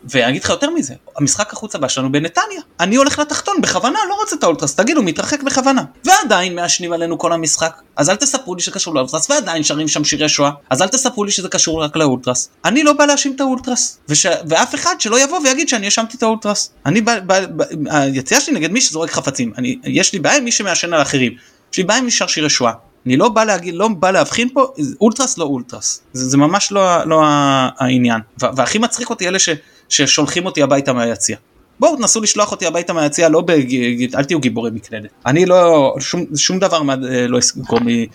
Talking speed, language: 165 wpm, Hebrew